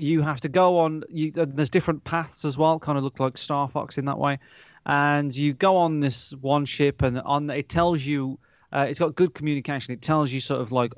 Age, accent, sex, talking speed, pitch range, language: 30-49, British, male, 235 wpm, 120-155 Hz, English